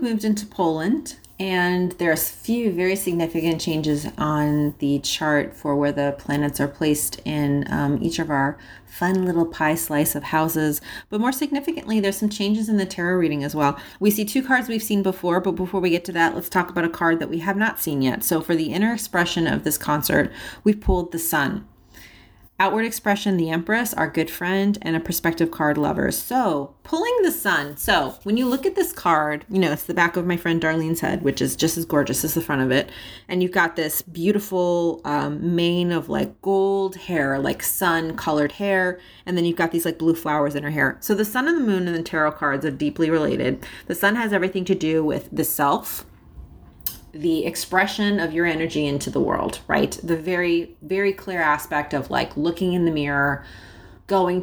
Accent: American